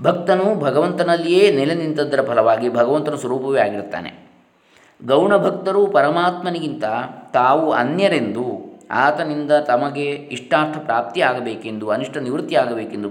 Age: 20-39